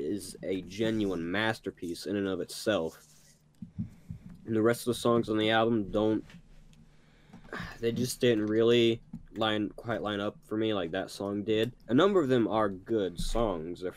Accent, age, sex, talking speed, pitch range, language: American, 20-39, male, 170 wpm, 90-110 Hz, English